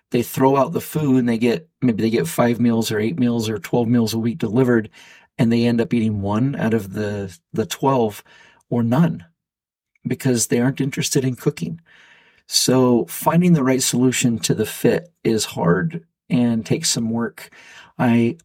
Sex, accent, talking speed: male, American, 180 wpm